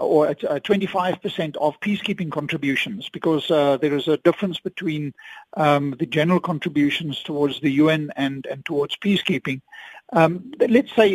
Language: English